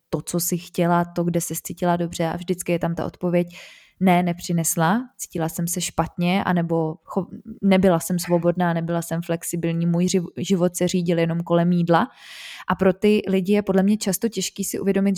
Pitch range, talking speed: 175-200 Hz, 185 wpm